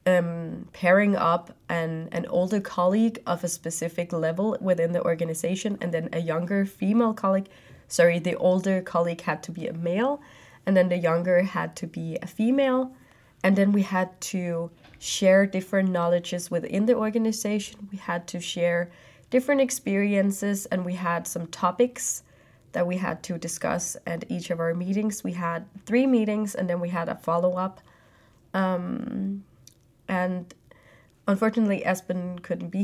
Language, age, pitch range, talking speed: Danish, 20-39, 170-200 Hz, 155 wpm